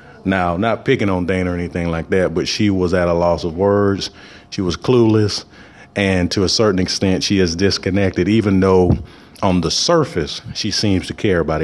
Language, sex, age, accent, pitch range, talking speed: English, male, 30-49, American, 90-105 Hz, 195 wpm